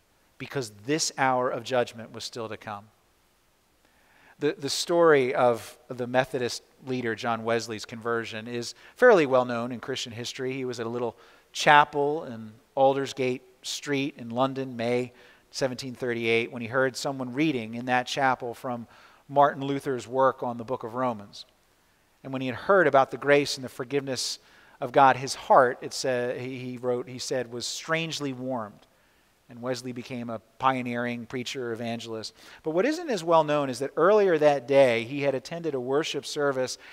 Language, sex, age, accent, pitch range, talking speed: English, male, 40-59, American, 120-150 Hz, 170 wpm